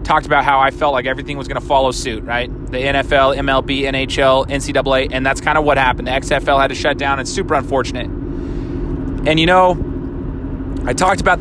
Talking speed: 205 wpm